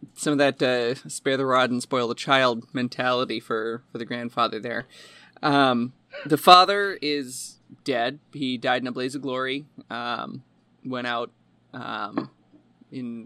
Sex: male